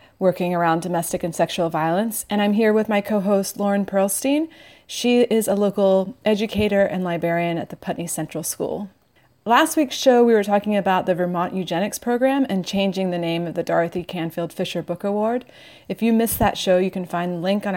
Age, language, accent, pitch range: 30-49, English, American, 175-205 Hz